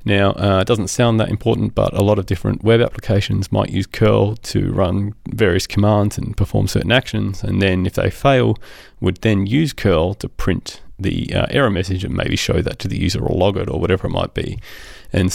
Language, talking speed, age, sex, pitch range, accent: English, 220 wpm, 30-49, male, 95-115 Hz, Australian